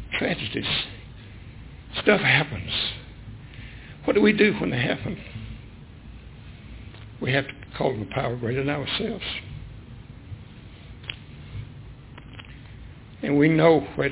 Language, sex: English, male